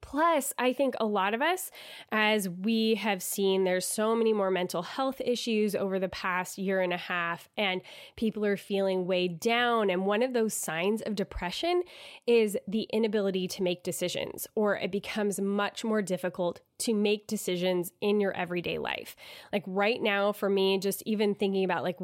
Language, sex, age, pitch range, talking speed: English, female, 10-29, 195-250 Hz, 180 wpm